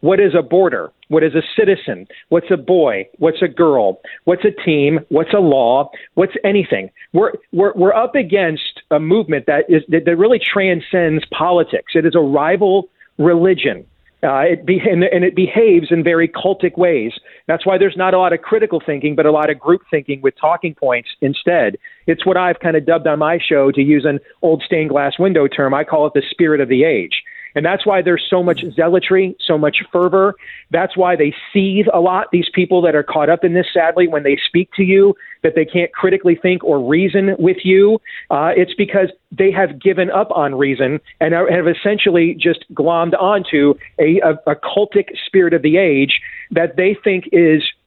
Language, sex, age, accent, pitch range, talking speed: English, male, 40-59, American, 160-190 Hz, 200 wpm